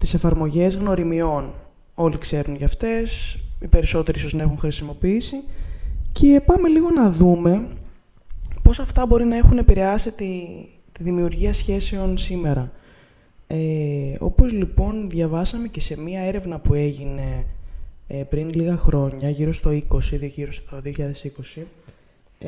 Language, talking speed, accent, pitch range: Greek, 130 wpm, native, 155-205 Hz